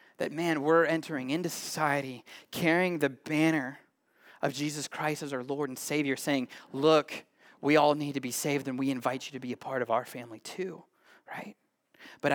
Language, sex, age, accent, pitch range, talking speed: English, male, 20-39, American, 140-165 Hz, 190 wpm